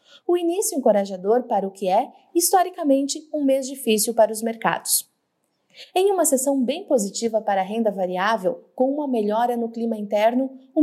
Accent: Brazilian